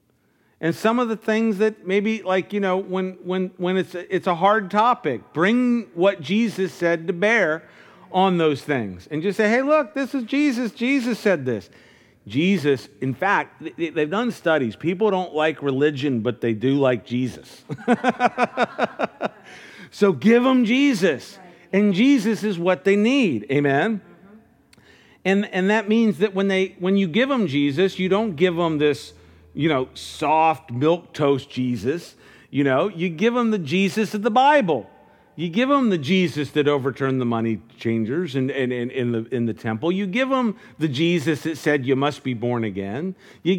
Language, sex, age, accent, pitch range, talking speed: English, male, 50-69, American, 130-205 Hz, 180 wpm